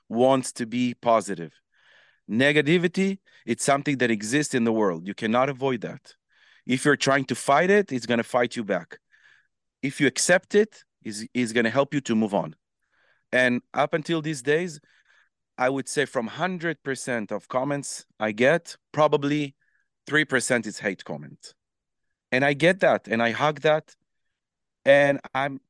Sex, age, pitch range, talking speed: male, 40-59, 115-145 Hz, 160 wpm